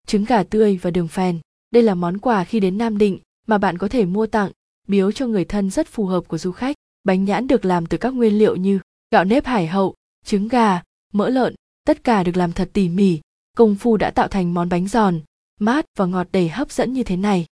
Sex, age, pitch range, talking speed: female, 20-39, 185-230 Hz, 240 wpm